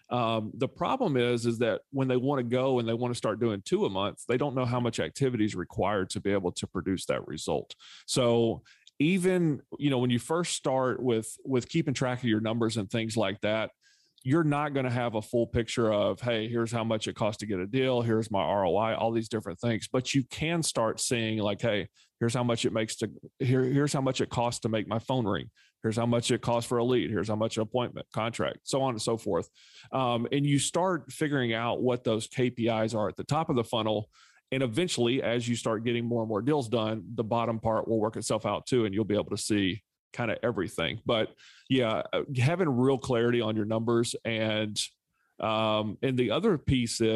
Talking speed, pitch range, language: 230 wpm, 110-130 Hz, English